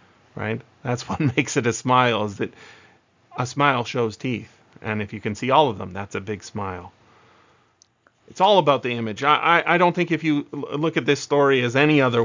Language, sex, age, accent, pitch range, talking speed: English, male, 30-49, American, 115-150 Hz, 220 wpm